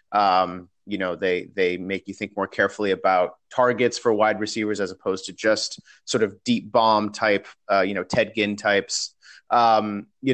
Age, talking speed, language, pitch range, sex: 30-49, 185 wpm, English, 105-120 Hz, male